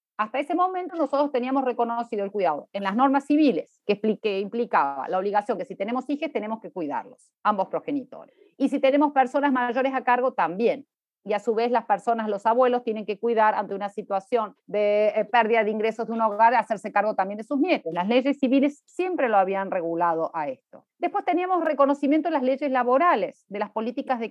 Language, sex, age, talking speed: Spanish, female, 40-59, 205 wpm